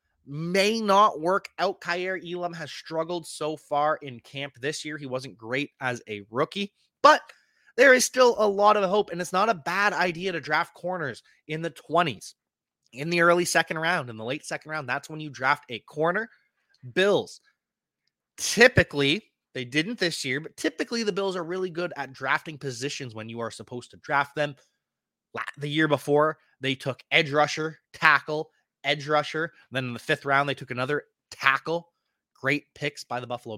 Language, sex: English, male